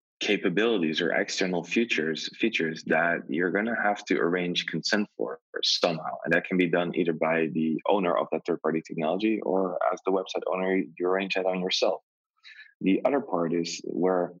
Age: 20-39